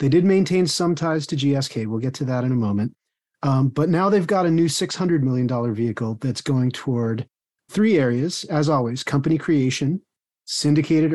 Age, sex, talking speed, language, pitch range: 30-49, male, 185 wpm, English, 130-170 Hz